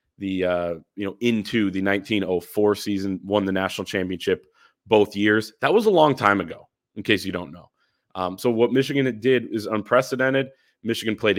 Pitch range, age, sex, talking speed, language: 95-125 Hz, 30-49, male, 180 wpm, English